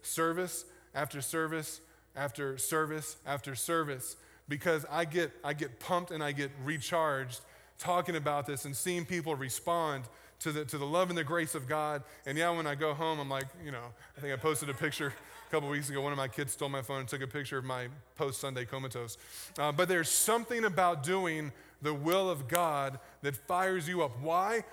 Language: English